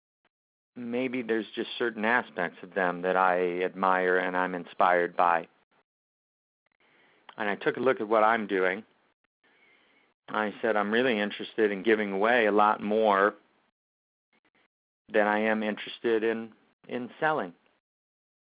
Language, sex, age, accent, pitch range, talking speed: English, male, 50-69, American, 110-160 Hz, 135 wpm